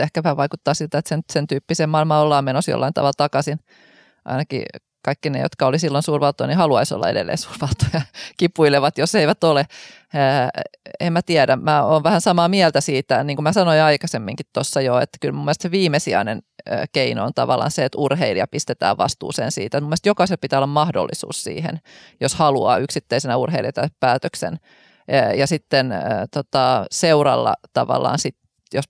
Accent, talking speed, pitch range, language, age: native, 165 wpm, 140-165 Hz, Finnish, 20-39